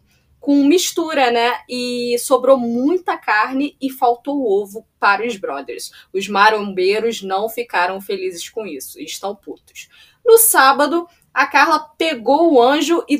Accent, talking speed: Brazilian, 135 wpm